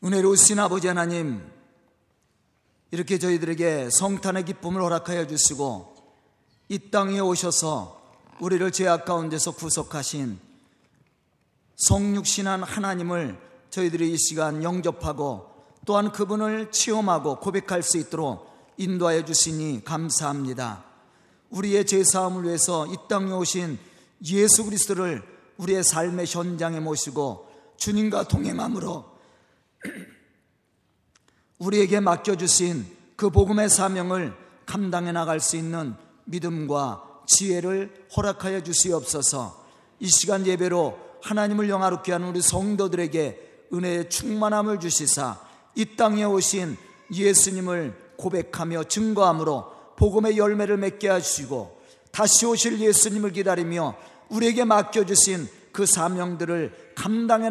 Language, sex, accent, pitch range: Korean, male, native, 160-200 Hz